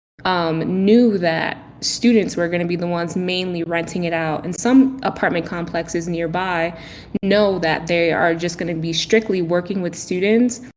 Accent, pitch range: American, 165-190 Hz